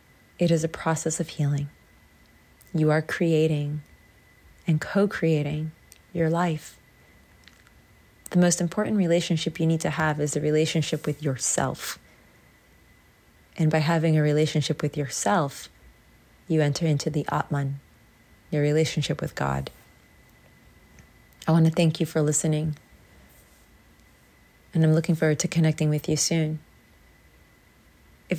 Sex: female